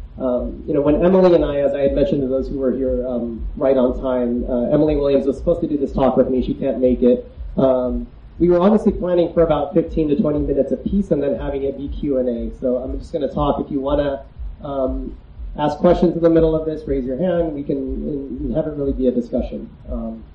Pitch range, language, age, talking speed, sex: 125-155 Hz, English, 30-49, 245 wpm, male